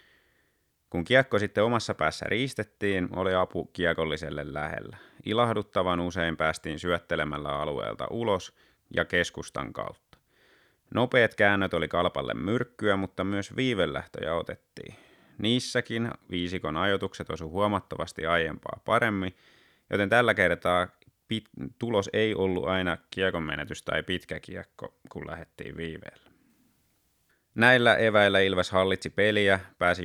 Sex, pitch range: male, 85-105 Hz